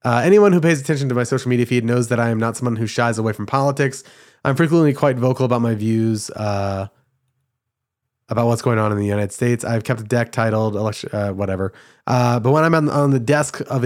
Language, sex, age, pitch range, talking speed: English, male, 20-39, 115-140 Hz, 235 wpm